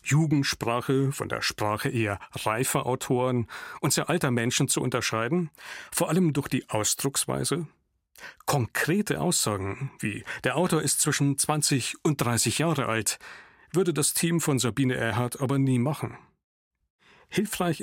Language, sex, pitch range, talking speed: German, male, 115-155 Hz, 135 wpm